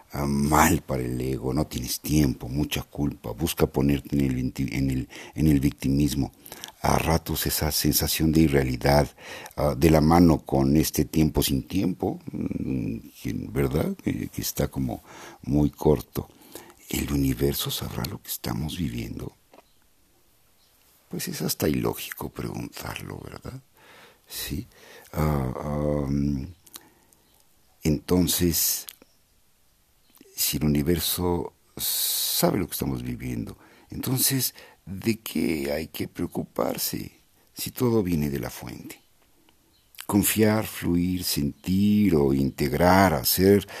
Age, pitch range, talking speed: 60-79, 70-95 Hz, 115 wpm